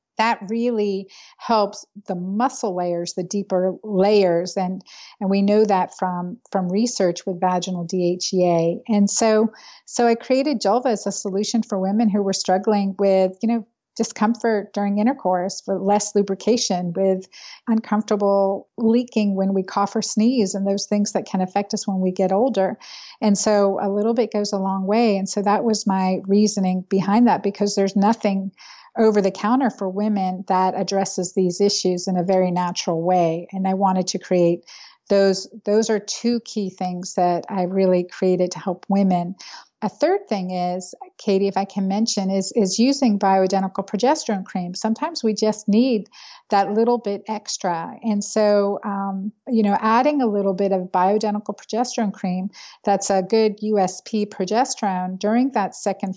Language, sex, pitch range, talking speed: English, female, 190-215 Hz, 165 wpm